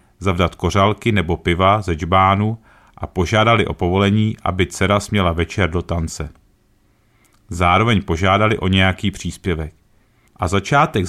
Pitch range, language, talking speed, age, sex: 90-110 Hz, Czech, 125 wpm, 40-59, male